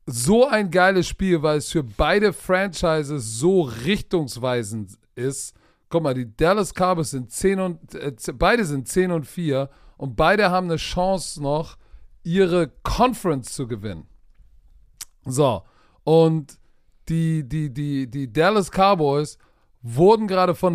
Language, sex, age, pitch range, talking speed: German, male, 40-59, 140-185 Hz, 140 wpm